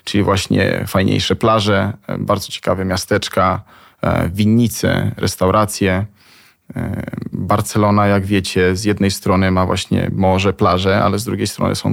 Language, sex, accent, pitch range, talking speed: Polish, male, native, 100-115 Hz, 120 wpm